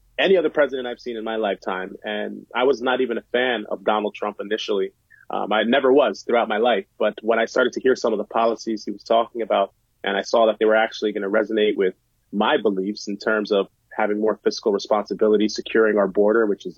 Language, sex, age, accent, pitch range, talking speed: English, male, 30-49, American, 105-120 Hz, 235 wpm